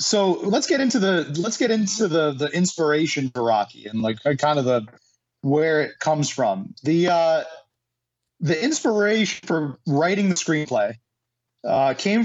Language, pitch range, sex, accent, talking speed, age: English, 140-185 Hz, male, American, 160 wpm, 30-49